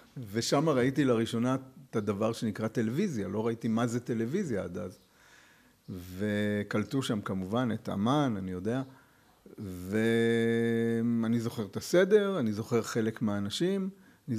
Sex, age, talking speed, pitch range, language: male, 60-79, 125 wpm, 110-135 Hz, Hebrew